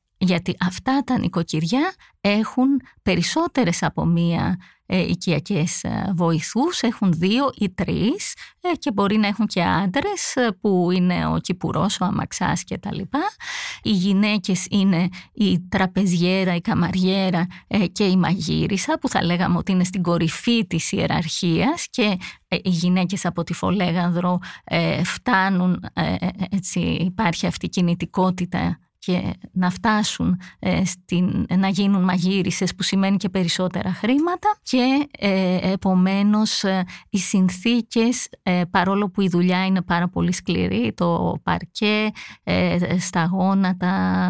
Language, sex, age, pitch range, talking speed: English, female, 20-39, 175-205 Hz, 135 wpm